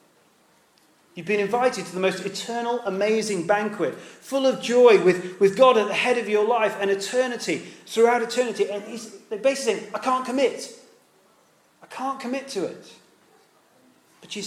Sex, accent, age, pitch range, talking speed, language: male, British, 30-49, 180-240 Hz, 160 wpm, English